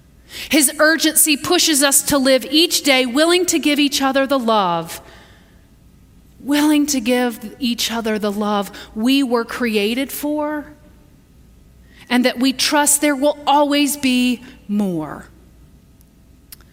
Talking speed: 125 wpm